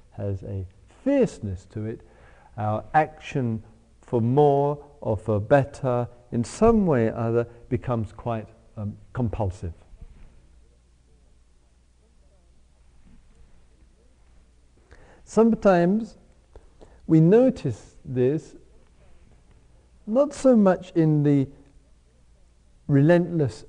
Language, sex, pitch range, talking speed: English, male, 90-150 Hz, 80 wpm